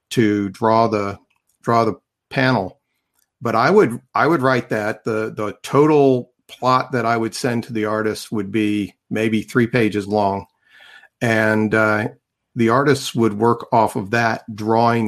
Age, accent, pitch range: 50-69, American, 105-120 Hz